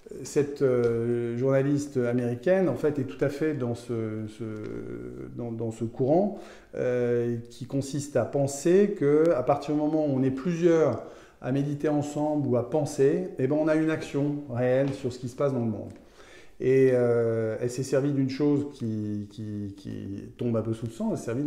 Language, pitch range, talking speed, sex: French, 120-145 Hz, 195 wpm, male